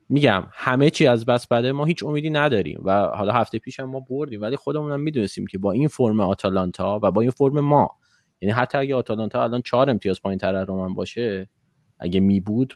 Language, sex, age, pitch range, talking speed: Persian, male, 20-39, 100-140 Hz, 200 wpm